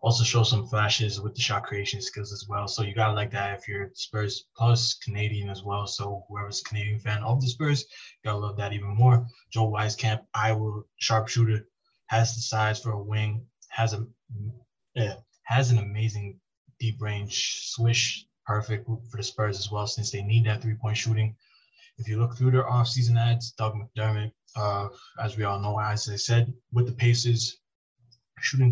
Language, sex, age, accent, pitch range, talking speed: English, male, 20-39, American, 105-120 Hz, 185 wpm